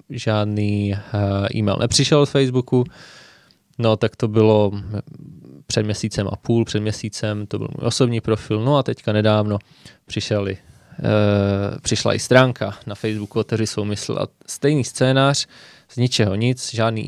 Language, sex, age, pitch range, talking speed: Czech, male, 20-39, 105-120 Hz, 140 wpm